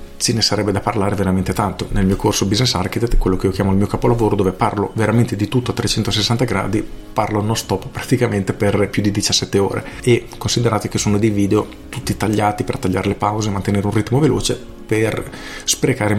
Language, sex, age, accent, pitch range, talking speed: Italian, male, 40-59, native, 95-115 Hz, 205 wpm